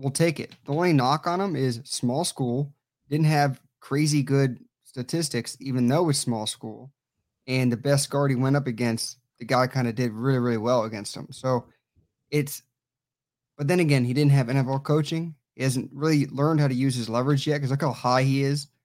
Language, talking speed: English, 205 wpm